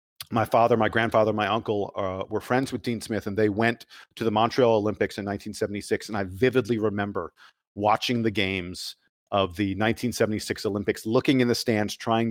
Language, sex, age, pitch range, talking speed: English, male, 40-59, 100-125 Hz, 180 wpm